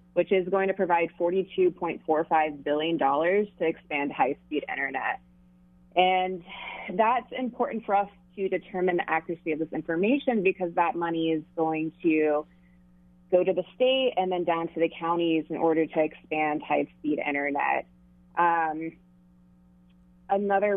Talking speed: 135 wpm